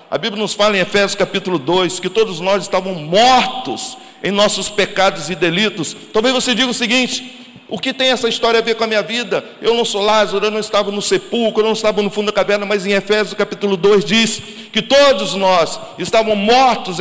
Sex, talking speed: male, 215 wpm